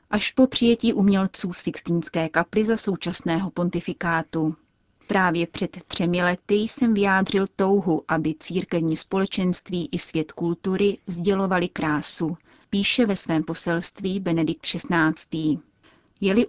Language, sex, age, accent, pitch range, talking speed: Czech, female, 30-49, native, 170-200 Hz, 115 wpm